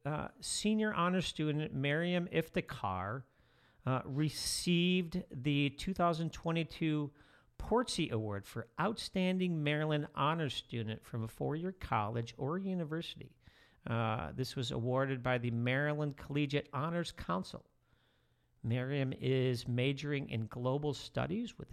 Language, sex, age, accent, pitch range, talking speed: English, male, 50-69, American, 115-150 Hz, 110 wpm